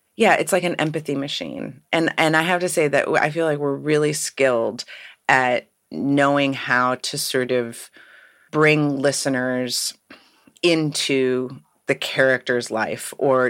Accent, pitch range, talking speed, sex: American, 125-155 Hz, 140 wpm, female